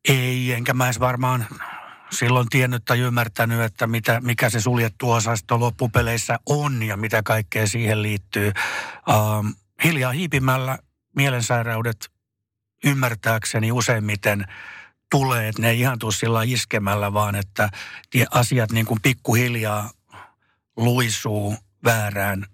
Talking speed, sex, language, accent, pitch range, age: 110 wpm, male, Finnish, native, 105-125 Hz, 60-79